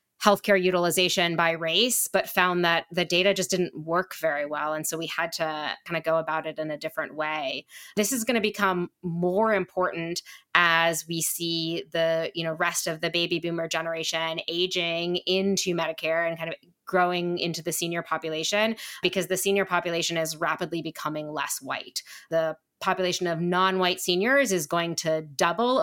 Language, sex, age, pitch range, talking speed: English, female, 20-39, 160-185 Hz, 175 wpm